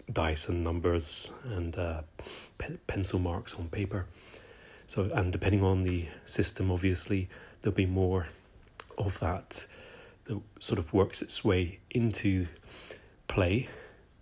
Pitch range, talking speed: 85-100 Hz, 120 wpm